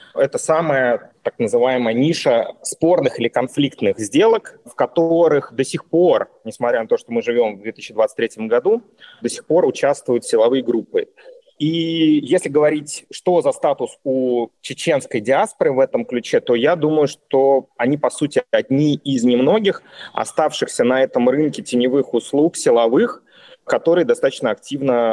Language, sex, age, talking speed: Russian, male, 30-49, 145 wpm